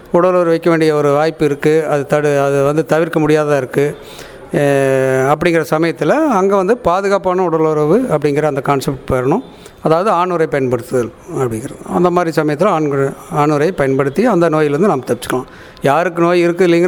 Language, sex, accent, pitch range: English, male, Indian, 145-185 Hz